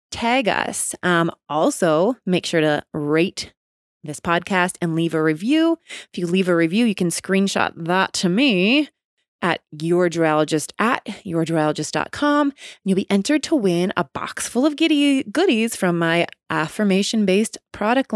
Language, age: English, 20-39